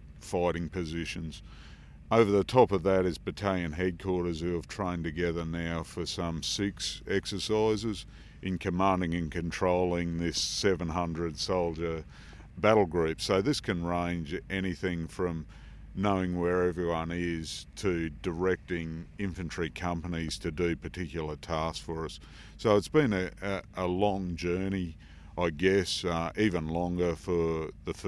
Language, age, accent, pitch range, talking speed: English, 50-69, Australian, 80-95 Hz, 135 wpm